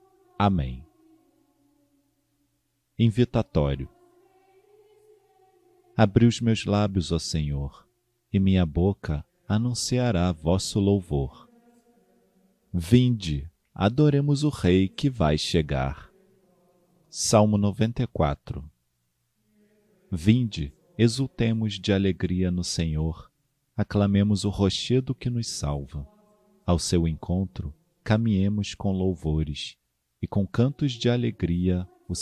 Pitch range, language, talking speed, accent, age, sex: 85-135 Hz, Portuguese, 90 wpm, Brazilian, 40-59, male